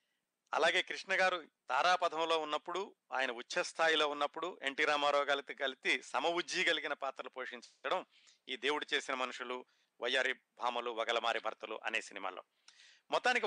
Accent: native